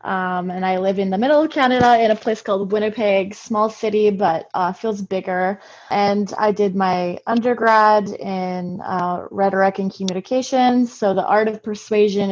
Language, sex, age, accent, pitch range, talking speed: English, female, 20-39, American, 185-220 Hz, 170 wpm